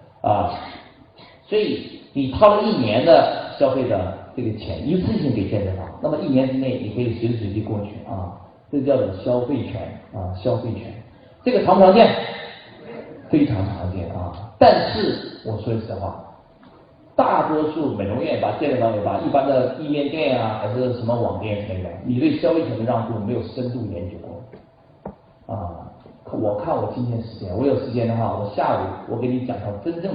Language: Chinese